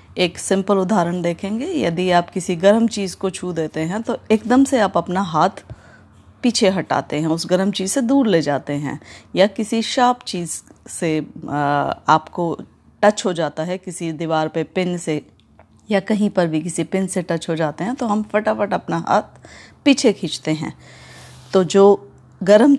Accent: native